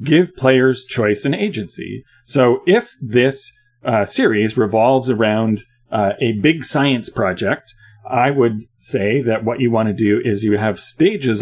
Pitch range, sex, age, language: 105-130 Hz, male, 40-59, English